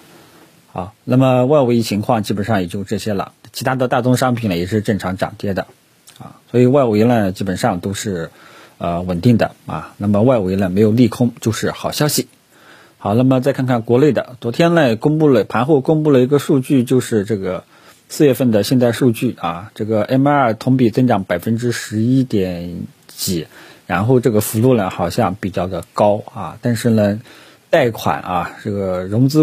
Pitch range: 100-130 Hz